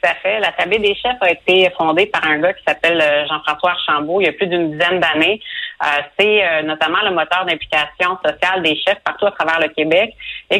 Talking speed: 220 wpm